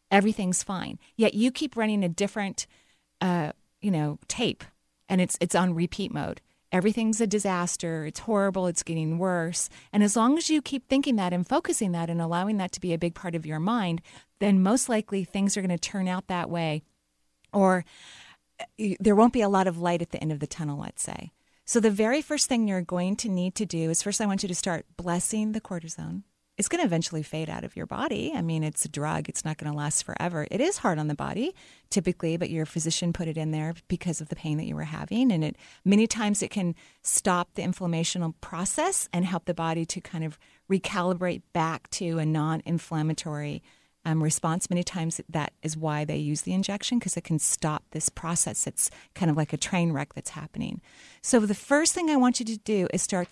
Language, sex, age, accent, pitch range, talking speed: English, female, 30-49, American, 165-205 Hz, 220 wpm